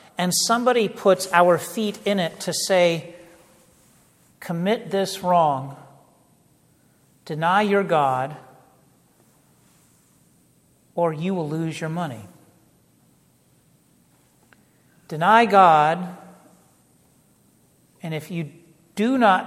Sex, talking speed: male, 85 wpm